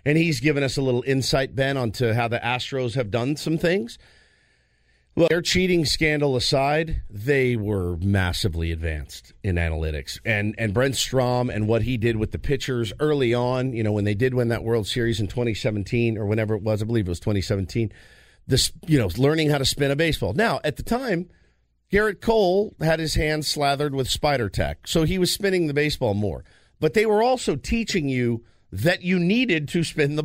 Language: English